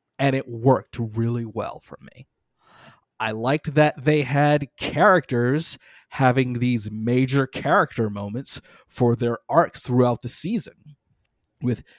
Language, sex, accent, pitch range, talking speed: English, male, American, 115-140 Hz, 125 wpm